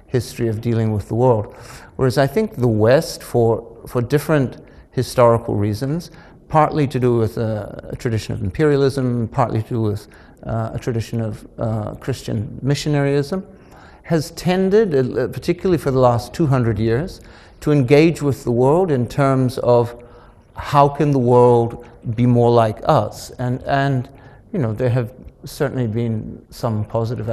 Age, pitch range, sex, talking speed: 60-79, 115-140 Hz, male, 155 wpm